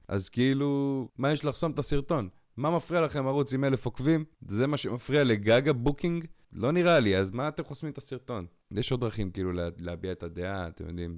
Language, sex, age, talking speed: Hebrew, male, 30-49, 200 wpm